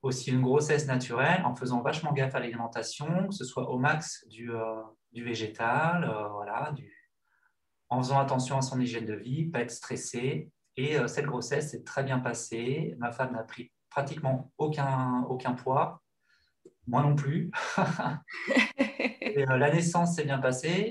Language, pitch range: French, 125-155 Hz